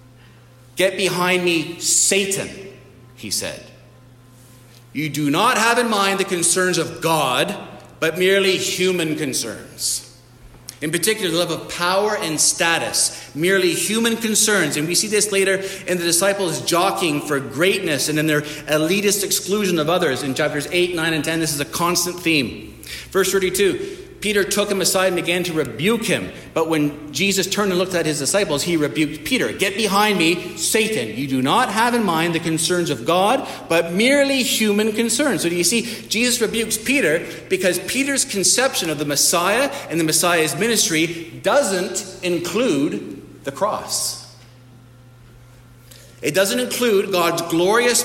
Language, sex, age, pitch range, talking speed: English, male, 50-69, 150-200 Hz, 160 wpm